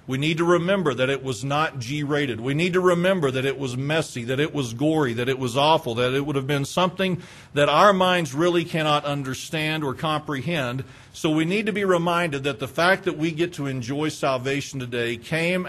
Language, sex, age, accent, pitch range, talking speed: English, male, 40-59, American, 125-155 Hz, 215 wpm